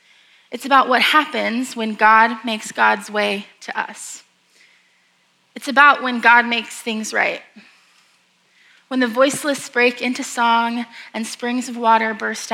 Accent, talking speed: American, 140 wpm